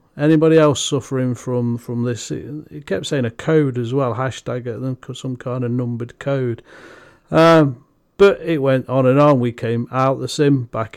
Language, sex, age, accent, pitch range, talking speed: English, male, 40-59, British, 120-150 Hz, 180 wpm